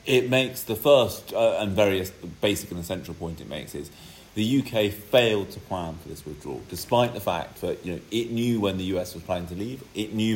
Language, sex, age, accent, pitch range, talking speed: English, male, 30-49, British, 90-110 Hz, 225 wpm